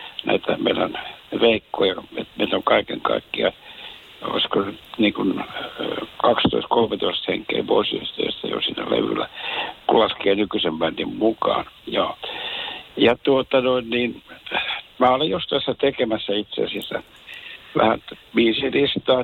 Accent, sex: native, male